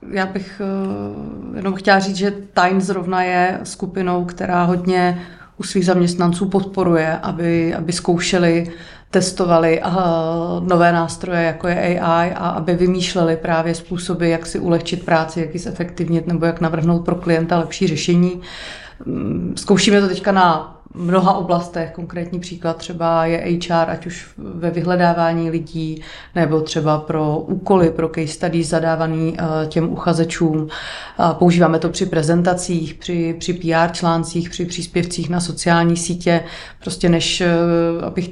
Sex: female